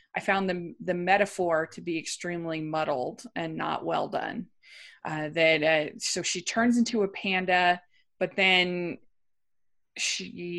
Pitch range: 180-260 Hz